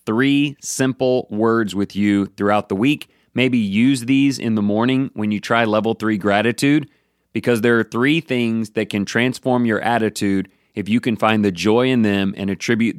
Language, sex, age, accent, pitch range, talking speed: English, male, 30-49, American, 105-130 Hz, 185 wpm